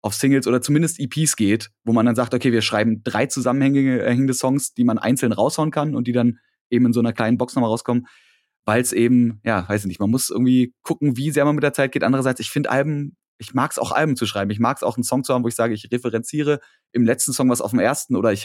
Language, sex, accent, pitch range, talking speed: German, male, German, 105-125 Hz, 270 wpm